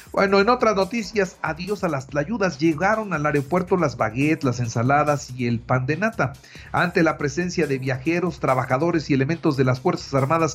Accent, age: Mexican, 50-69